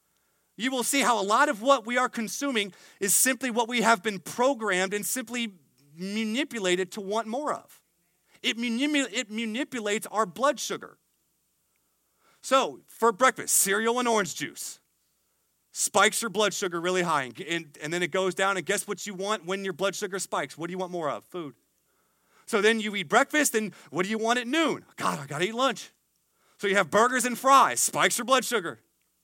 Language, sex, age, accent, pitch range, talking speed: English, male, 30-49, American, 165-225 Hz, 195 wpm